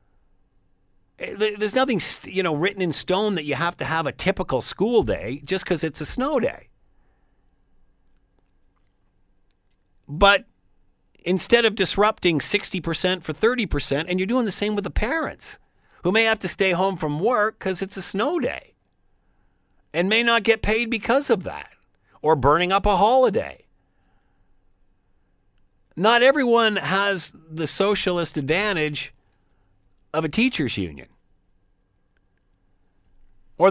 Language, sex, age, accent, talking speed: English, male, 50-69, American, 130 wpm